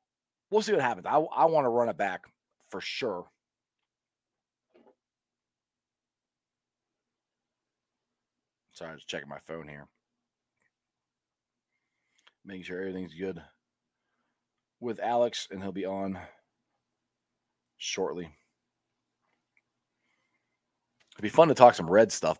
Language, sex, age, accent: English, male, 40-59, American